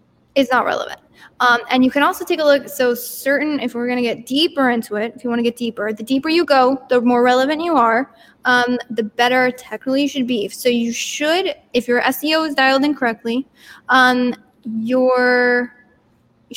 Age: 10-29